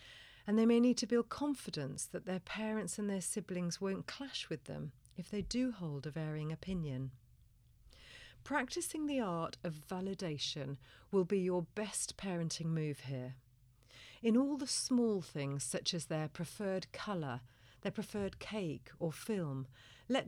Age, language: 40-59, English